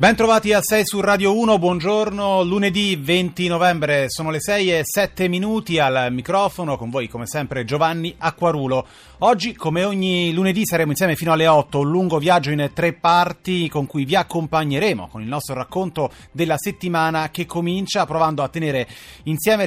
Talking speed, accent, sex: 170 wpm, native, male